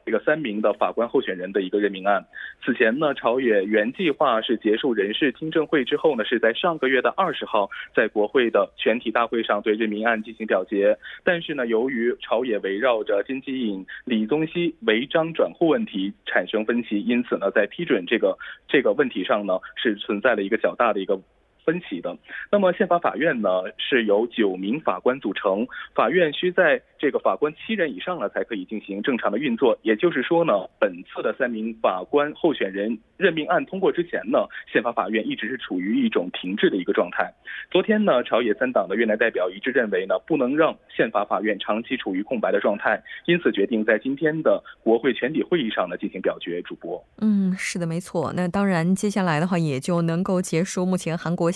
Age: 20-39